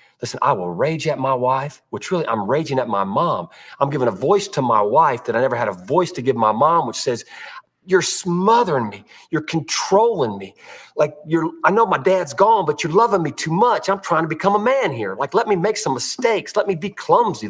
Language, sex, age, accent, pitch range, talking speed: English, male, 40-59, American, 130-205 Hz, 240 wpm